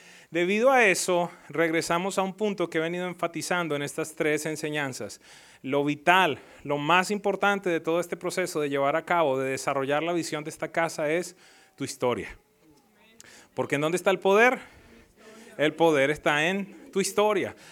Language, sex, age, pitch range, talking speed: English, male, 30-49, 145-180 Hz, 170 wpm